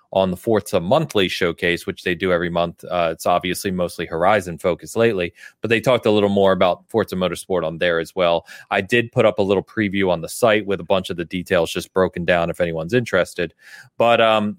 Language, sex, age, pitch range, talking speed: English, male, 30-49, 90-105 Hz, 220 wpm